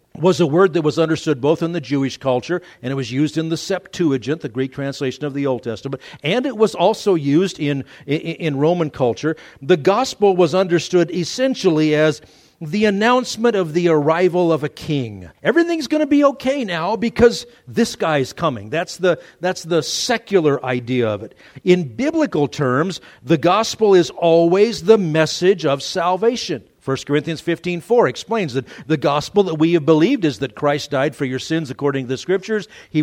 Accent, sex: American, male